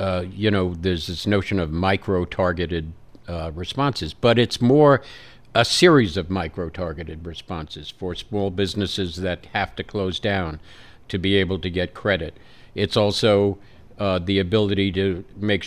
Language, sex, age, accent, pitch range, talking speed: English, male, 50-69, American, 90-110 Hz, 150 wpm